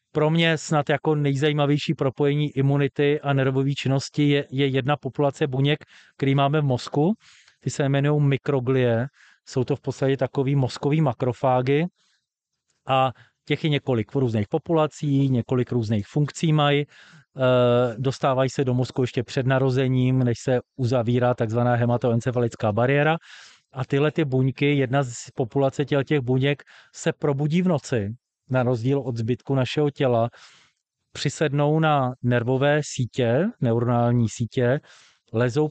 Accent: native